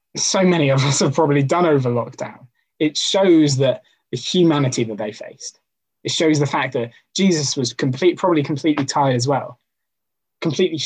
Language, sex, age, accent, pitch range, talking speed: English, male, 20-39, British, 120-150 Hz, 170 wpm